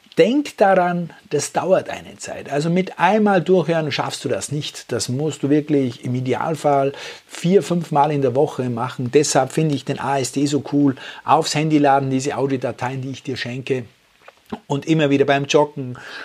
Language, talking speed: German, 175 wpm